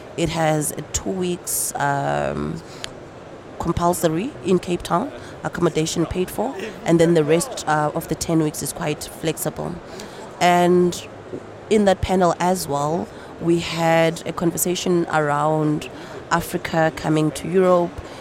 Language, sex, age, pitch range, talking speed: French, female, 30-49, 155-180 Hz, 130 wpm